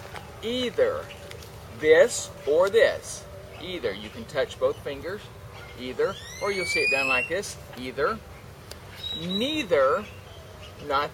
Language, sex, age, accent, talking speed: English, male, 40-59, American, 115 wpm